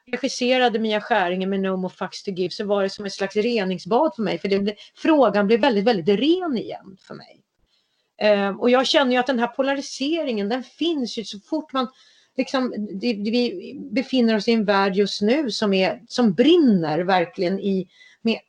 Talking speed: 190 wpm